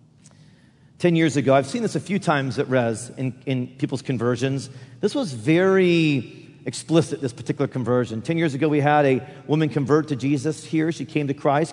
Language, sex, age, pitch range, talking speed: English, male, 40-59, 135-180 Hz, 190 wpm